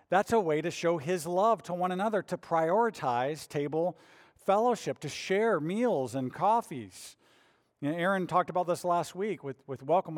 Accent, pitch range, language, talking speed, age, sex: American, 125-170 Hz, English, 175 wpm, 50-69, male